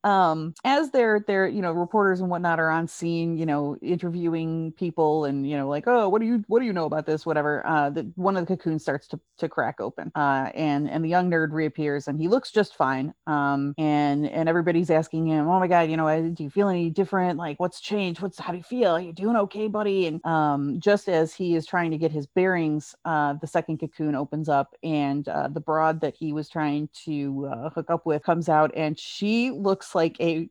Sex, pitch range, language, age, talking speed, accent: female, 150-180 Hz, English, 30-49, 240 wpm, American